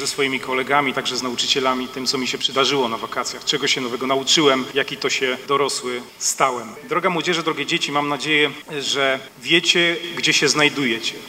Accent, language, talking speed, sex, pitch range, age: native, Polish, 175 wpm, male, 135-155 Hz, 40-59